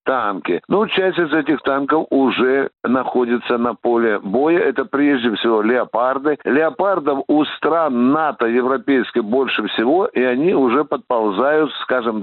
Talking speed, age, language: 130 wpm, 60-79, Russian